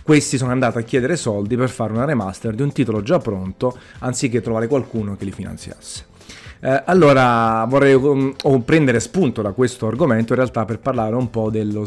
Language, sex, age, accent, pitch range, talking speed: Italian, male, 30-49, native, 110-130 Hz, 180 wpm